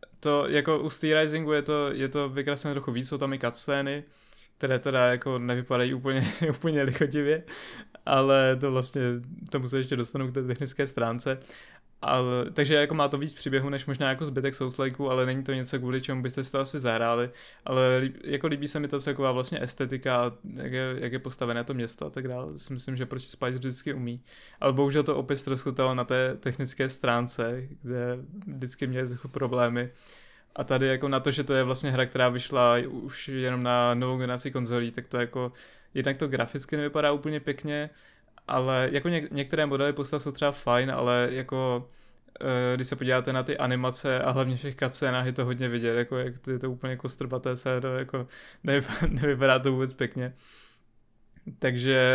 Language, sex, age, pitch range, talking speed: Czech, male, 20-39, 125-140 Hz, 190 wpm